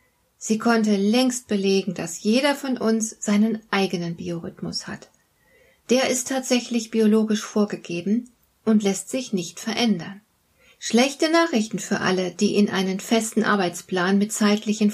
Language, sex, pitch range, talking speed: German, female, 195-245 Hz, 135 wpm